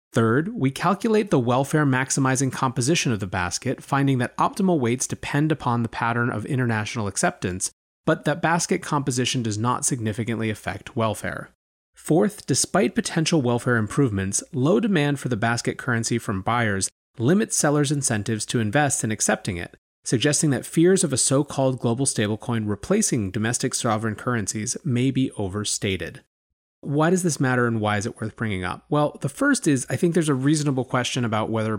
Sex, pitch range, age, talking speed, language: male, 110-140 Hz, 30-49, 165 wpm, English